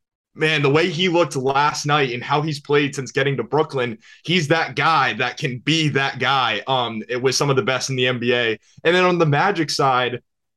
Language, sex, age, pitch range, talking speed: English, male, 20-39, 135-165 Hz, 220 wpm